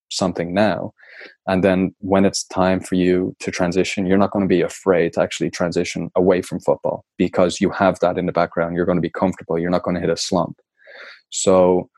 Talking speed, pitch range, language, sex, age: 215 wpm, 90-95 Hz, English, male, 20-39